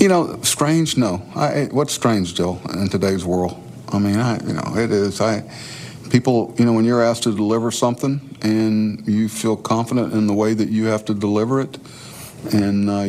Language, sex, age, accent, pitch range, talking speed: English, male, 50-69, American, 95-115 Hz, 195 wpm